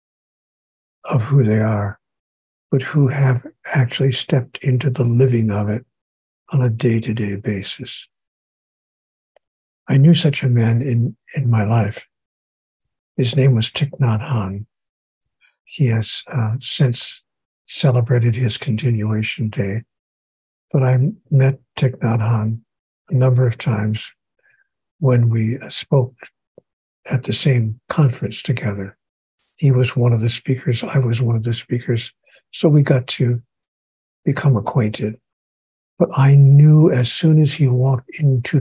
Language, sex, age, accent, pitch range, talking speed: English, male, 60-79, American, 110-140 Hz, 130 wpm